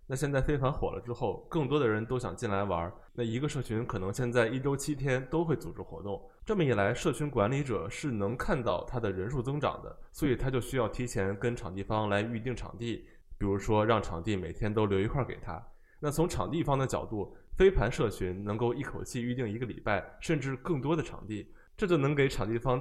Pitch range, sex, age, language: 100-130 Hz, male, 20-39, Chinese